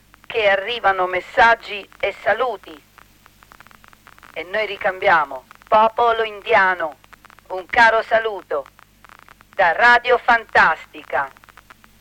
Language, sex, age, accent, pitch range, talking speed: Italian, female, 50-69, native, 195-255 Hz, 80 wpm